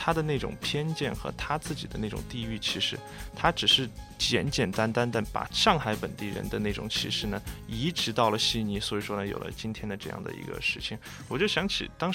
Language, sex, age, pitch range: Chinese, male, 20-39, 115-155 Hz